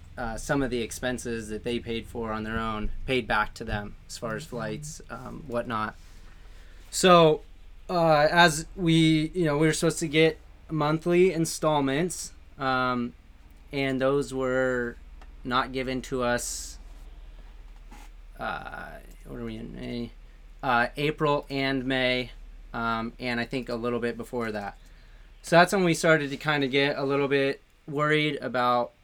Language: English